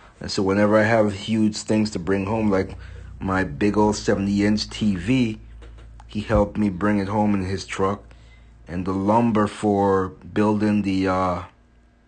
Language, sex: English, male